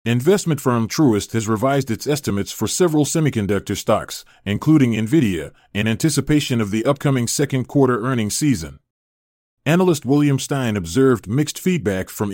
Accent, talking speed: American, 140 wpm